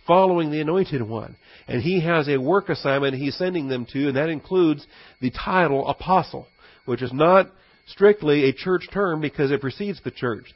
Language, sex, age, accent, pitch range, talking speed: English, male, 50-69, American, 125-170 Hz, 180 wpm